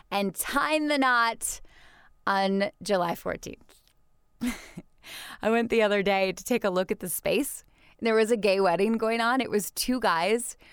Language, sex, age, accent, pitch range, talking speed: English, female, 20-39, American, 185-235 Hz, 175 wpm